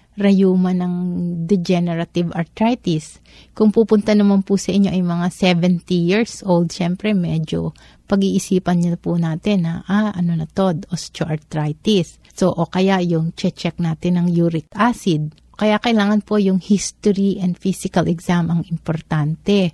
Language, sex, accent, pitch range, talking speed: Filipino, female, native, 170-200 Hz, 140 wpm